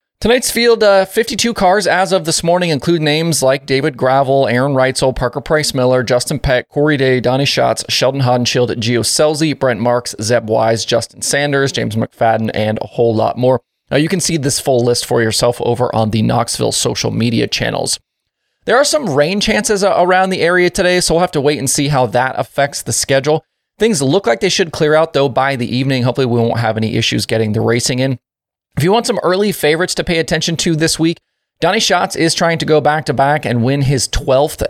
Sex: male